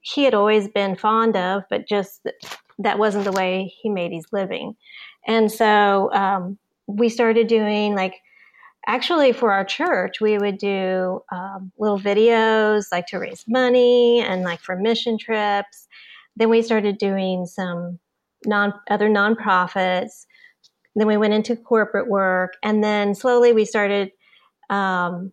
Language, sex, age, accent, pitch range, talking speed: English, female, 30-49, American, 195-225 Hz, 150 wpm